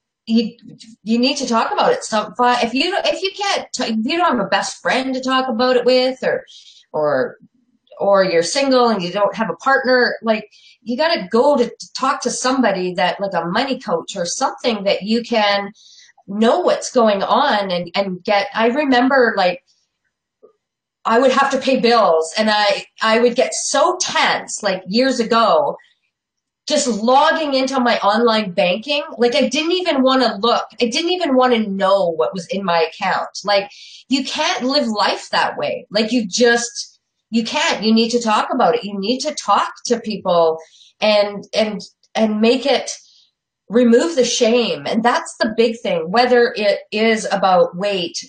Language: English